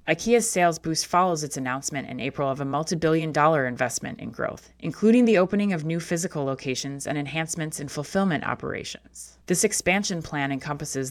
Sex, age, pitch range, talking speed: female, 20-39, 135-175 Hz, 165 wpm